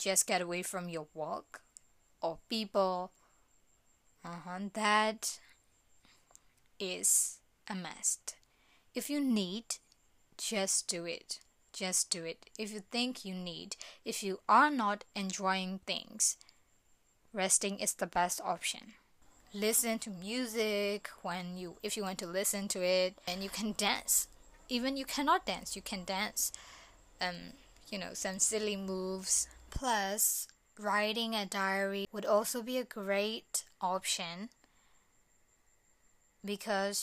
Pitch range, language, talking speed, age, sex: 185-215 Hz, English, 130 wpm, 20-39, female